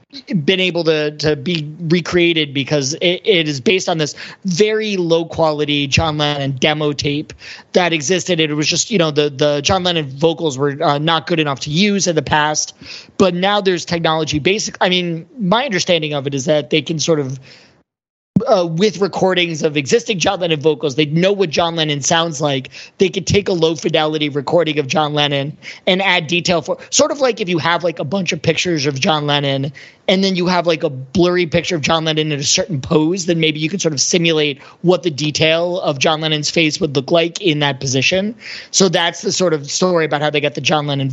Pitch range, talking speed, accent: 150-180 Hz, 215 wpm, American